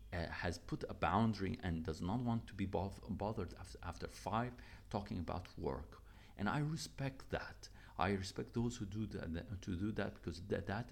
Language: Arabic